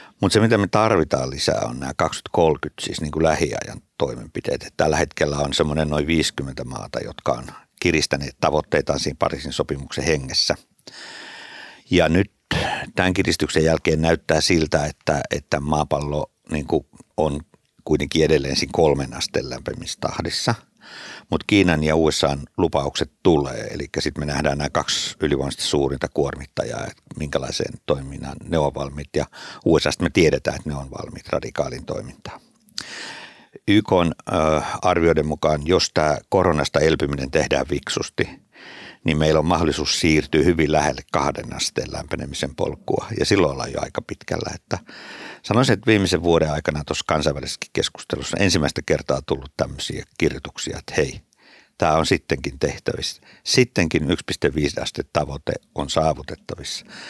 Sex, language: male, Finnish